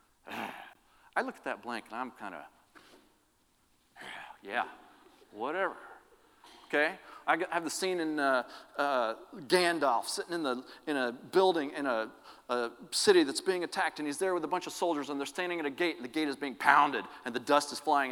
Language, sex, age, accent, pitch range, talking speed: English, male, 40-59, American, 140-200 Hz, 190 wpm